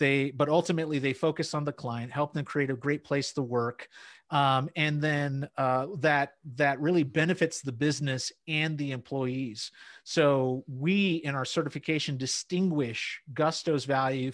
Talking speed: 155 wpm